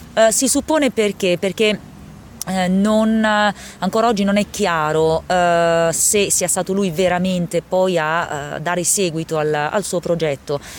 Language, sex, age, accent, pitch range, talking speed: Italian, female, 30-49, native, 160-205 Hz, 155 wpm